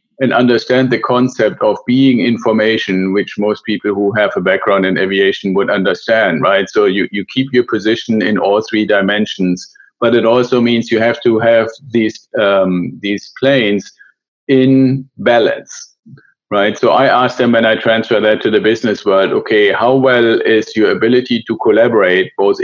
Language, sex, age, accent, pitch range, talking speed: English, male, 50-69, German, 105-125 Hz, 170 wpm